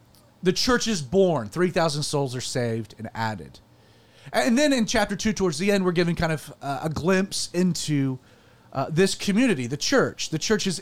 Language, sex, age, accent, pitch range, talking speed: English, male, 30-49, American, 140-195 Hz, 185 wpm